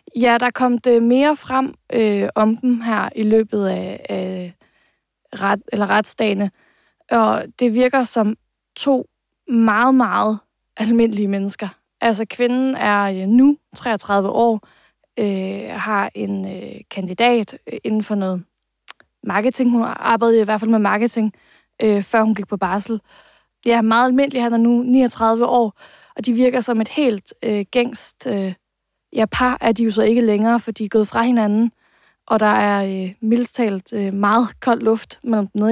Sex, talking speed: female, 150 wpm